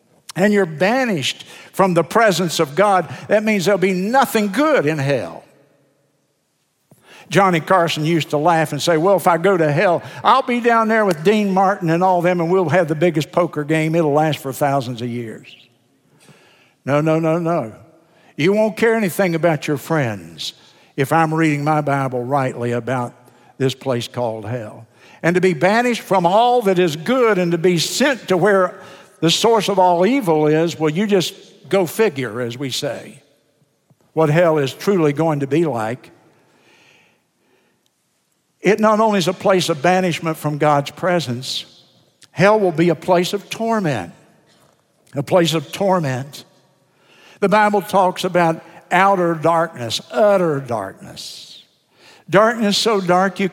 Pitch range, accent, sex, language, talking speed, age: 145-195 Hz, American, male, English, 165 wpm, 60-79